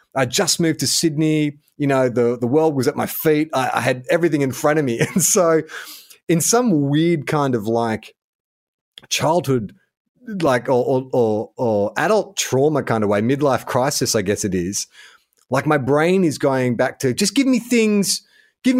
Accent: Australian